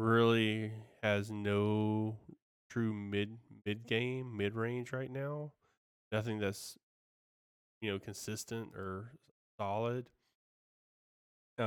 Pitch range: 100-110 Hz